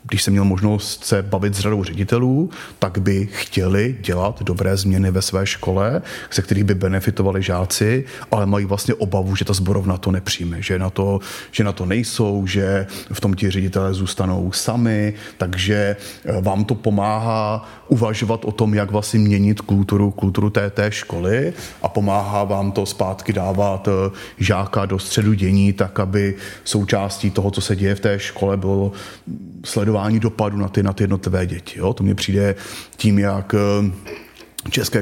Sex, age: male, 30-49